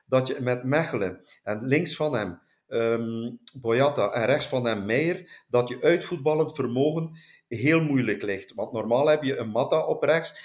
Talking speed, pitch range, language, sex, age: 170 wpm, 120-155 Hz, Dutch, male, 50-69